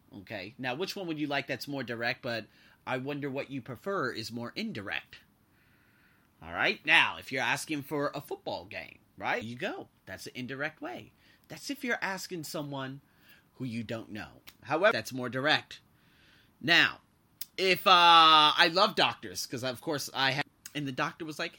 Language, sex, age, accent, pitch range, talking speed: English, male, 30-49, American, 120-180 Hz, 180 wpm